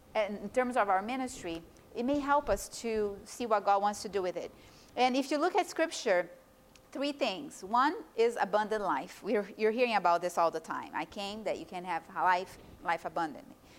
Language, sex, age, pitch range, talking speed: English, female, 30-49, 195-260 Hz, 205 wpm